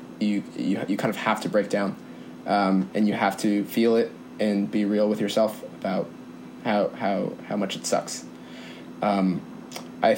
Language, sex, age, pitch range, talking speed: English, male, 20-39, 100-120 Hz, 175 wpm